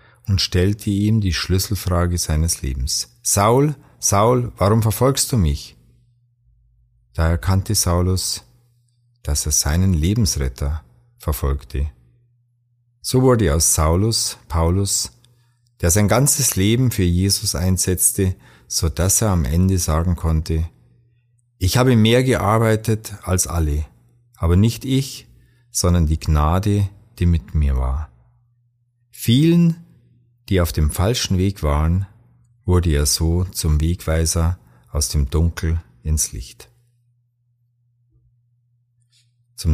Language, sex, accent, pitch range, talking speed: German, male, German, 80-120 Hz, 110 wpm